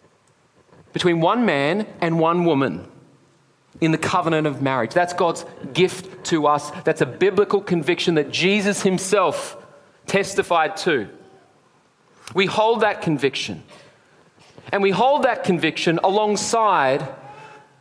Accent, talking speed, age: Australian, 120 wpm, 30-49